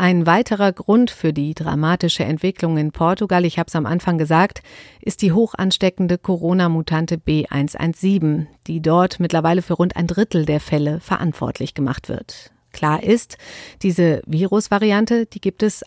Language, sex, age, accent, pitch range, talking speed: German, female, 50-69, German, 160-195 Hz, 150 wpm